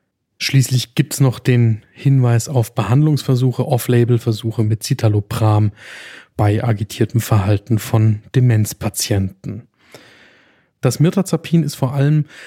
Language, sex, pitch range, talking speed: German, male, 110-135 Hz, 100 wpm